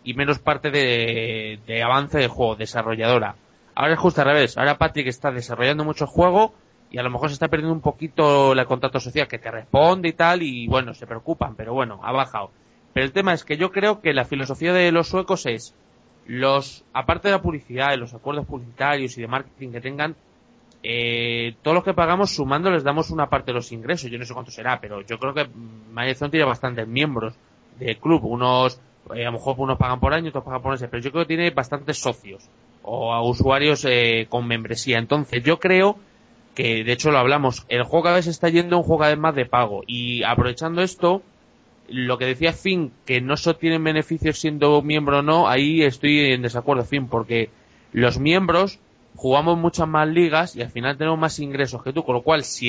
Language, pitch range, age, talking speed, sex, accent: Spanish, 120-160 Hz, 20-39, 210 wpm, male, Spanish